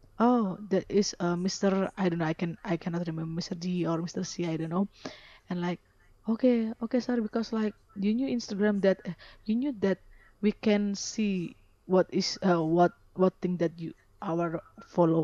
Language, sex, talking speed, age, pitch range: English, female, 195 wpm, 20-39, 170-205 Hz